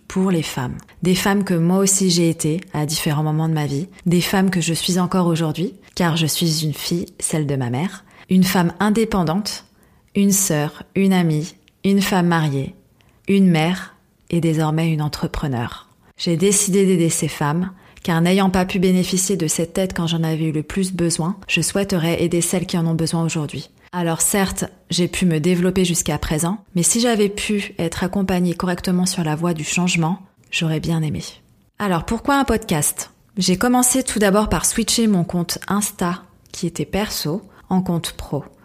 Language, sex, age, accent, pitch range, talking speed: French, female, 30-49, French, 165-195 Hz, 185 wpm